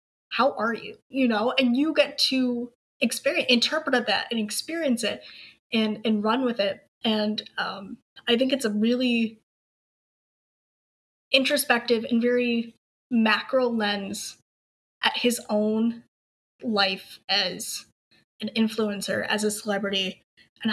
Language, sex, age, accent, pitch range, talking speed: English, female, 10-29, American, 215-275 Hz, 125 wpm